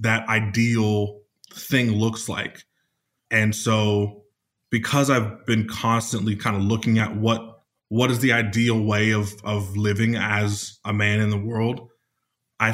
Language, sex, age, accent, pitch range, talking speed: English, male, 20-39, American, 105-115 Hz, 145 wpm